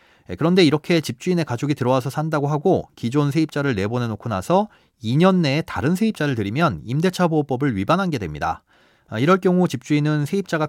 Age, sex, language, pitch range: 30-49, male, Korean, 115-170 Hz